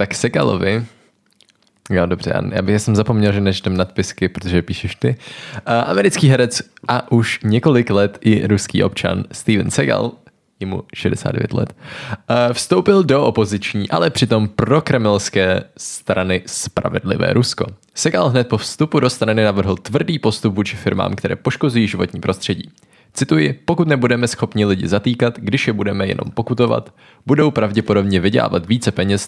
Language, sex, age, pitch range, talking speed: Czech, male, 20-39, 95-120 Hz, 135 wpm